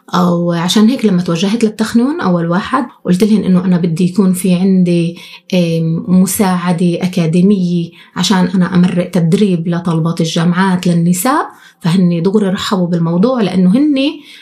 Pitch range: 180-215 Hz